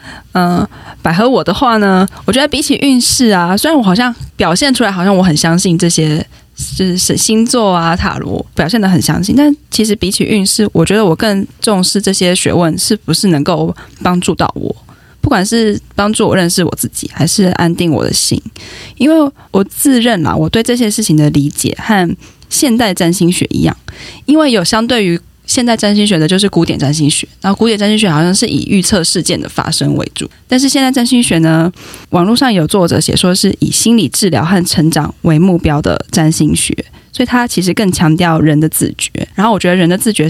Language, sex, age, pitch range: Chinese, female, 10-29, 165-220 Hz